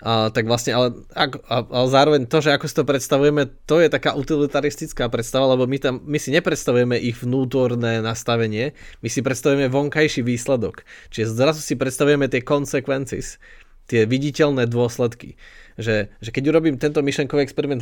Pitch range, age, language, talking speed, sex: 120-140 Hz, 20-39, Slovak, 160 wpm, male